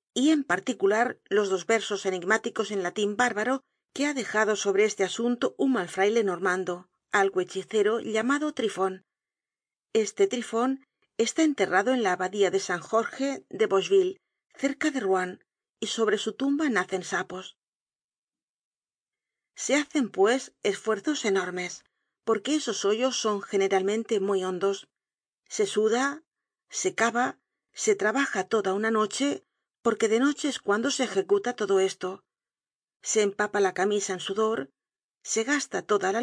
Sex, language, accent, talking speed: female, Spanish, Spanish, 140 wpm